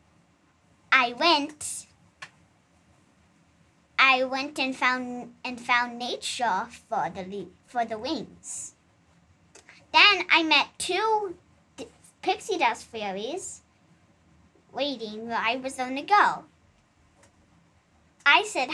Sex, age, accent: male, 10-29, American